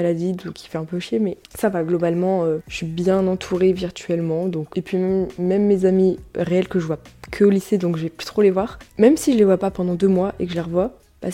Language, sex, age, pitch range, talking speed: French, female, 20-39, 180-220 Hz, 265 wpm